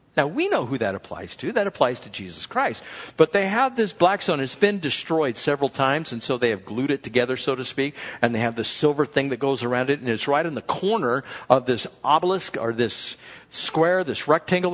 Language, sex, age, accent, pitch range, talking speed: English, male, 60-79, American, 135-205 Hz, 230 wpm